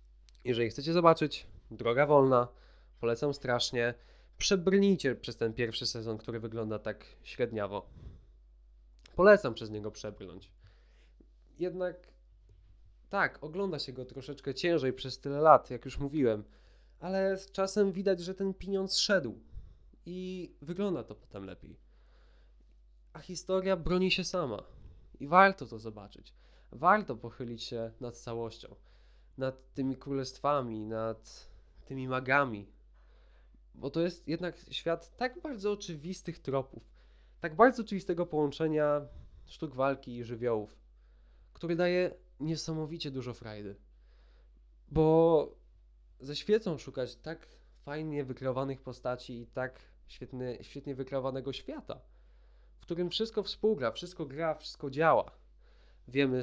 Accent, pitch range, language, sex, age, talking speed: native, 115-170 Hz, Polish, male, 20-39, 120 wpm